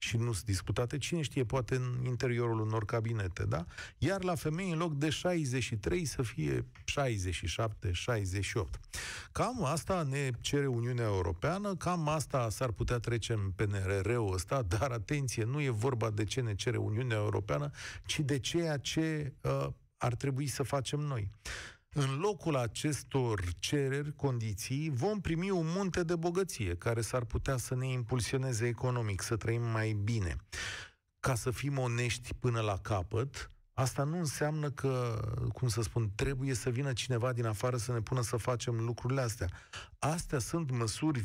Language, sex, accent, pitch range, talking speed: Romanian, male, native, 110-145 Hz, 160 wpm